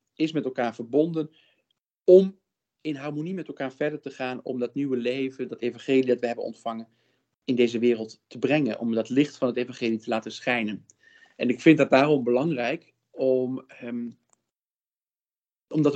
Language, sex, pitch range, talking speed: Dutch, male, 125-150 Hz, 170 wpm